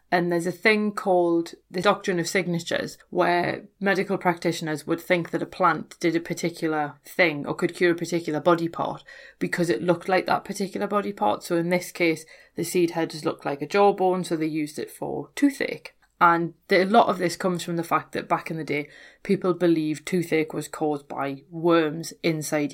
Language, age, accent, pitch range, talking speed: English, 30-49, British, 160-180 Hz, 200 wpm